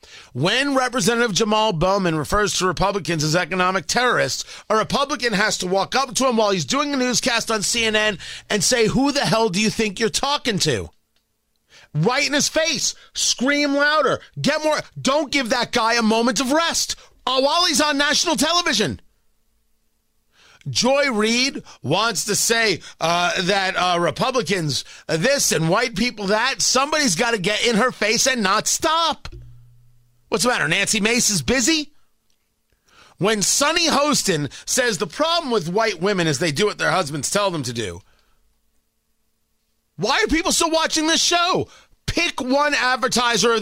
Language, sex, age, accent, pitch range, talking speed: English, male, 30-49, American, 200-290 Hz, 160 wpm